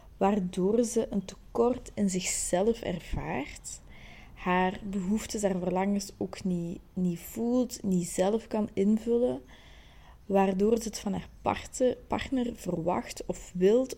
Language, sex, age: Dutch, female, 20-39